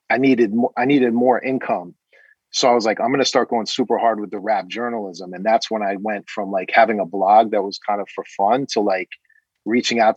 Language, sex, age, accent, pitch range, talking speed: English, male, 30-49, American, 100-115 Hz, 240 wpm